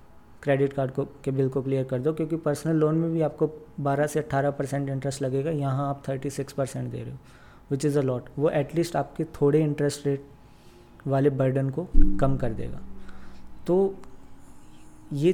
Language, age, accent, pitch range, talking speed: Hindi, 20-39, native, 130-145 Hz, 180 wpm